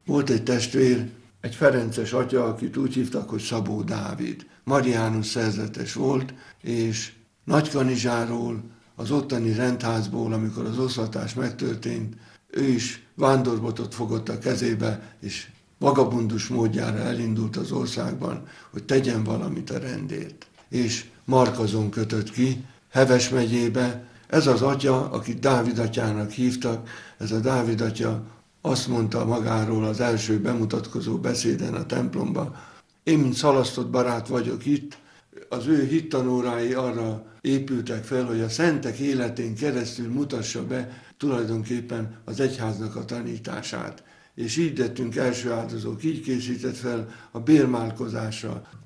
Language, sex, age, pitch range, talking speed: Hungarian, male, 60-79, 115-130 Hz, 125 wpm